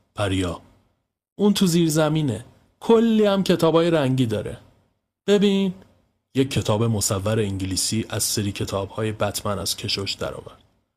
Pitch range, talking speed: 110-170 Hz, 125 wpm